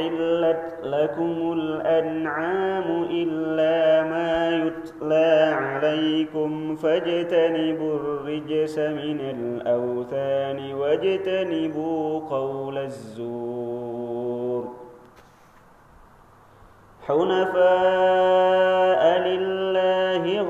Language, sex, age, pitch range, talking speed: Indonesian, male, 30-49, 140-170 Hz, 45 wpm